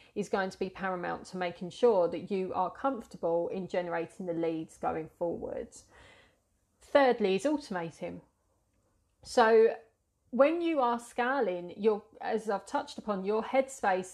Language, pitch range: English, 180-245 Hz